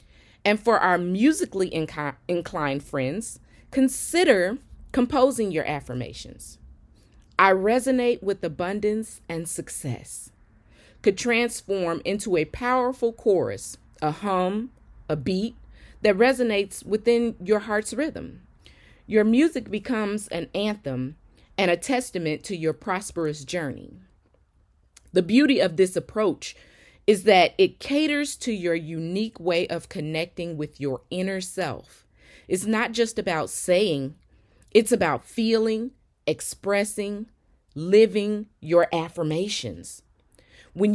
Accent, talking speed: American, 110 wpm